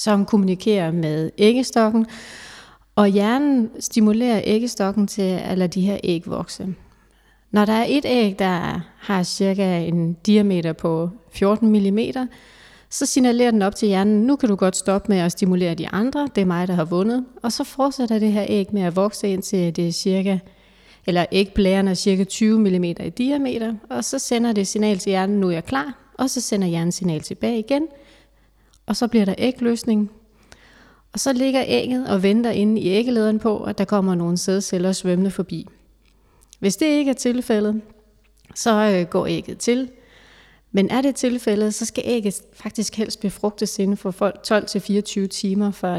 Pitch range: 190-230 Hz